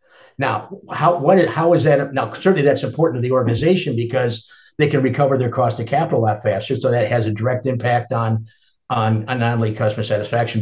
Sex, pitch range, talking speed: male, 110-125 Hz, 210 wpm